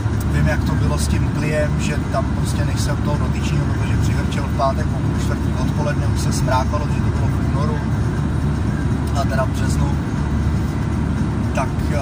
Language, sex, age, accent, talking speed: Czech, male, 30-49, native, 140 wpm